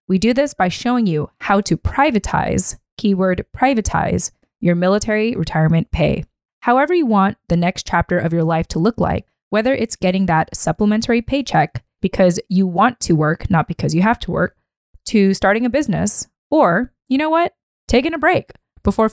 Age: 20-39